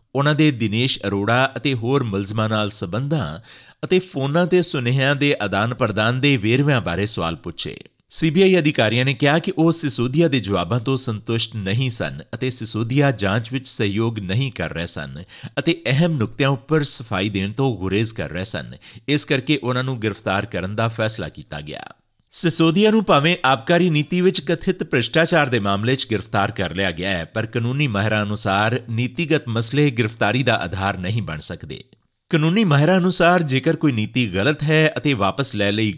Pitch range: 105-145 Hz